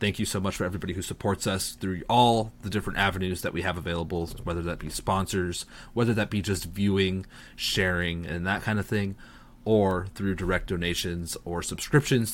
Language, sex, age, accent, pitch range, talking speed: English, male, 20-39, American, 90-115 Hz, 190 wpm